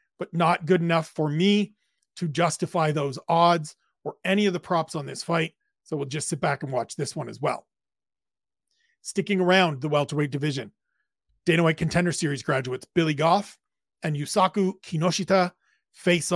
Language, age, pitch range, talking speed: English, 30-49, 160-195 Hz, 165 wpm